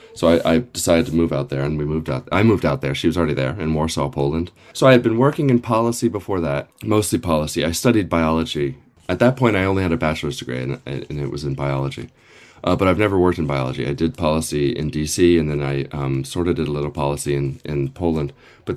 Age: 30-49